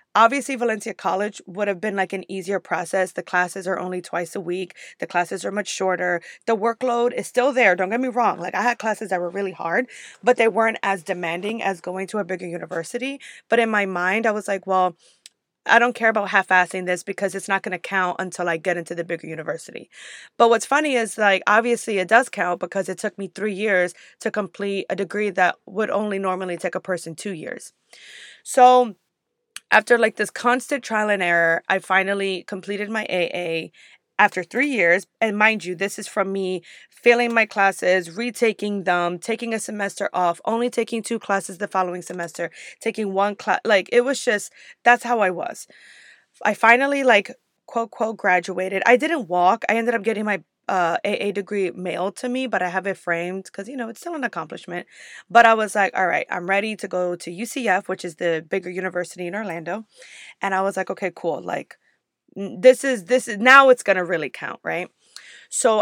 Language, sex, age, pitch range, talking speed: English, female, 20-39, 185-230 Hz, 205 wpm